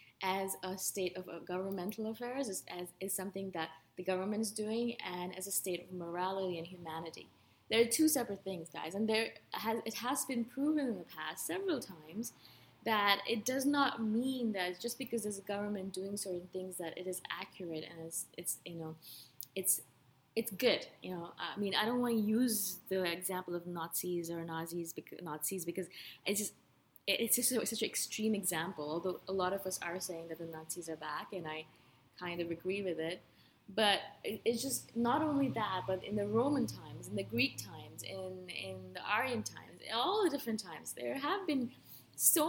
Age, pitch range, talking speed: 20-39, 175-230 Hz, 200 wpm